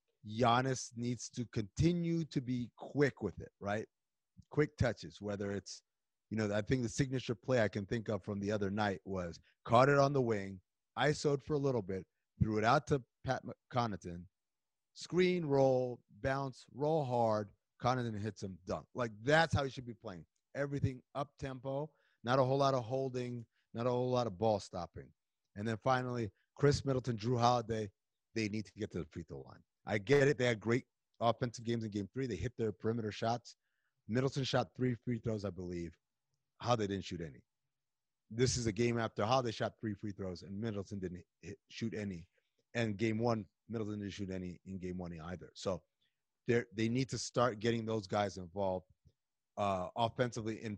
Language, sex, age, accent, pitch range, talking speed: English, male, 30-49, American, 100-130 Hz, 190 wpm